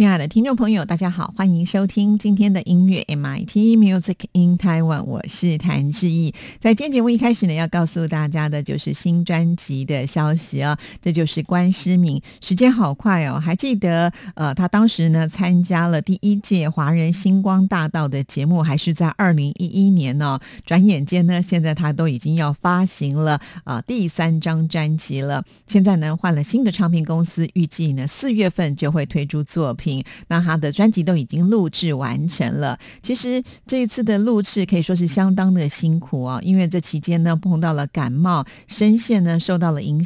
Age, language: 50-69, Chinese